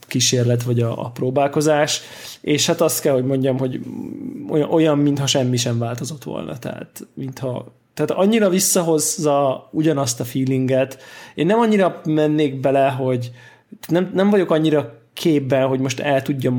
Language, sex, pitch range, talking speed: Hungarian, male, 125-145 Hz, 145 wpm